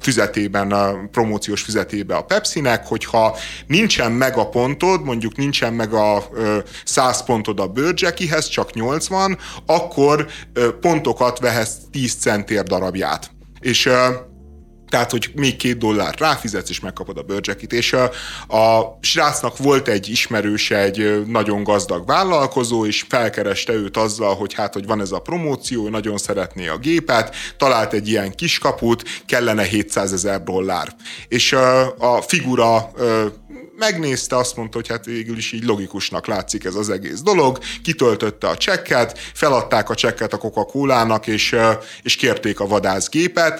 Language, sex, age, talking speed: Hungarian, male, 30-49, 140 wpm